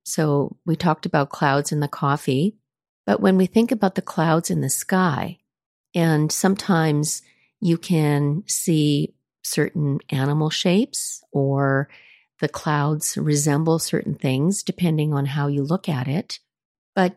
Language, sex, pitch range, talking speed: English, female, 145-190 Hz, 140 wpm